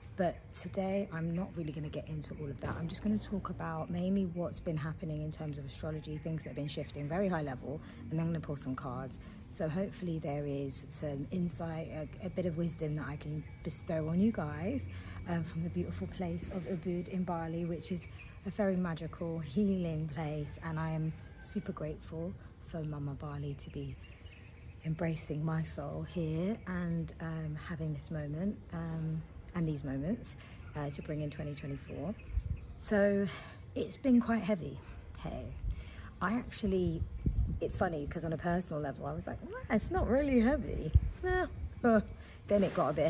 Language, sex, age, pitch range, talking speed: English, female, 30-49, 140-175 Hz, 180 wpm